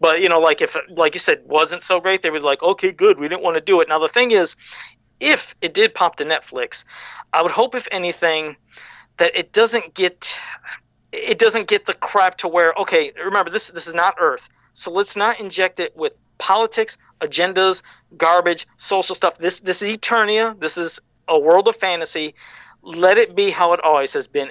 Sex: male